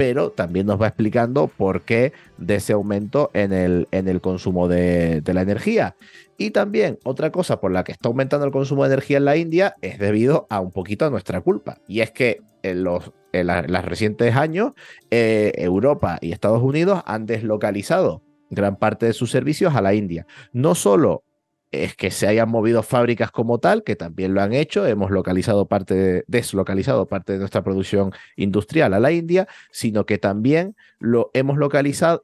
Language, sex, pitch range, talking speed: Spanish, male, 95-135 Hz, 185 wpm